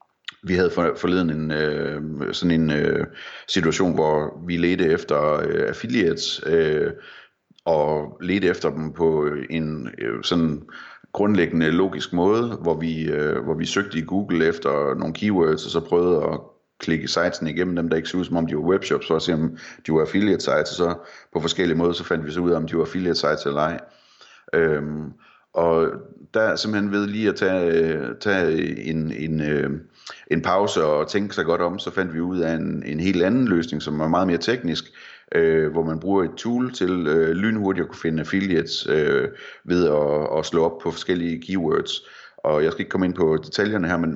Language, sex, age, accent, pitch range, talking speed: Danish, male, 30-49, native, 80-90 Hz, 195 wpm